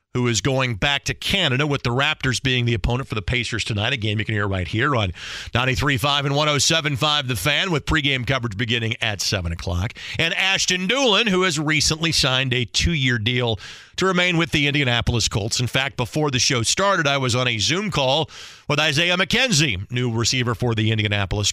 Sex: male